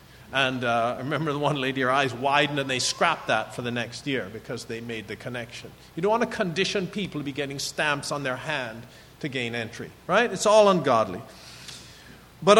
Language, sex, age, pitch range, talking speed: English, male, 50-69, 130-190 Hz, 205 wpm